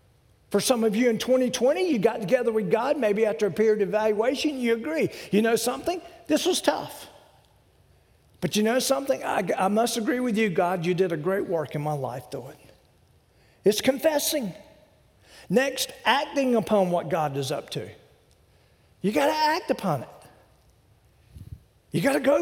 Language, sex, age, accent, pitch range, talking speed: English, male, 50-69, American, 145-230 Hz, 175 wpm